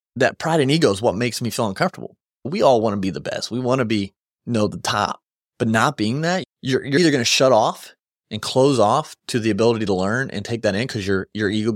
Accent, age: American, 30-49